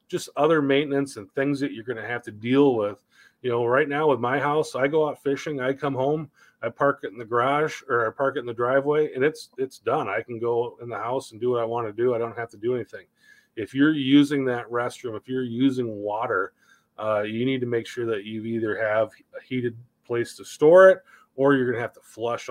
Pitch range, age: 115-140 Hz, 30-49